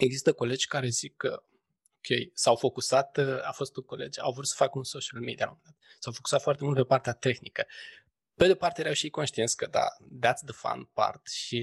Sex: male